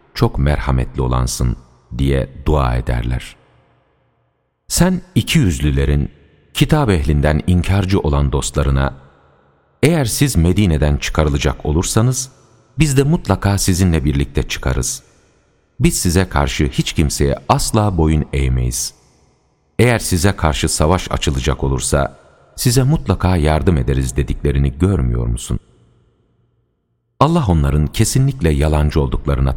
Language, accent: Turkish, native